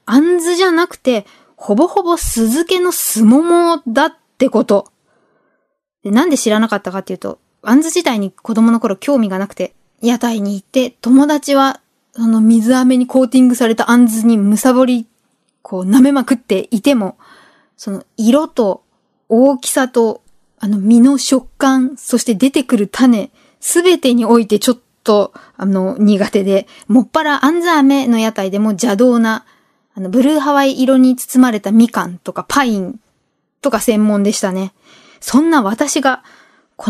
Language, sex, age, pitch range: Japanese, female, 20-39, 220-280 Hz